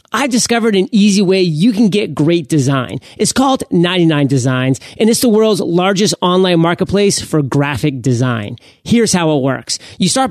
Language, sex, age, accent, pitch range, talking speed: English, male, 30-49, American, 160-210 Hz, 170 wpm